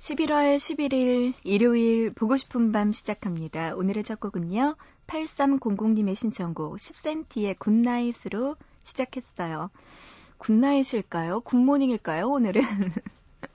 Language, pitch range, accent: Korean, 190-270 Hz, native